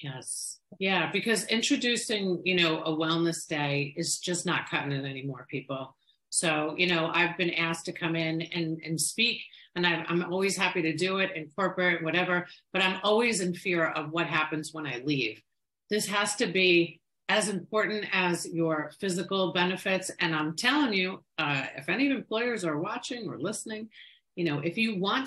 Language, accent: English, American